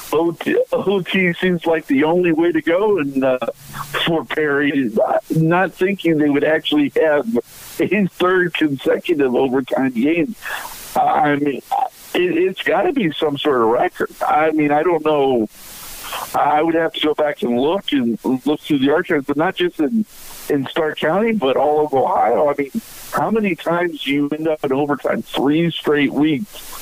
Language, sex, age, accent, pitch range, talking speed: English, male, 50-69, American, 145-185 Hz, 175 wpm